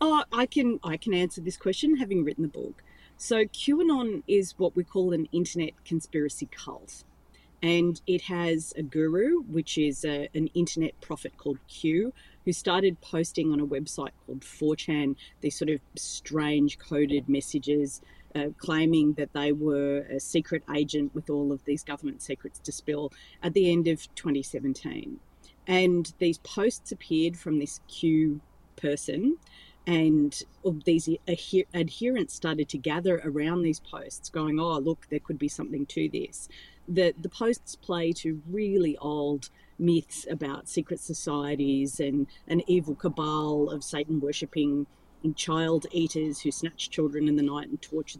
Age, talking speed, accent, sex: 40-59, 155 wpm, Australian, female